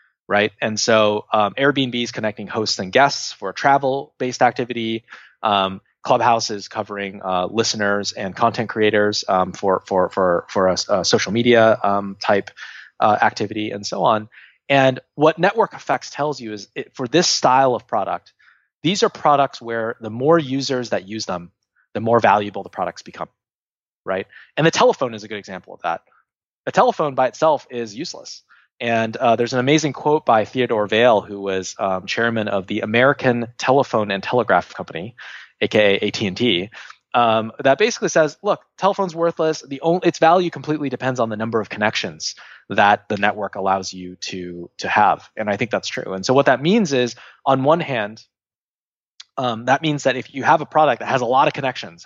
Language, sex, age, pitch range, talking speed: English, male, 20-39, 105-140 Hz, 180 wpm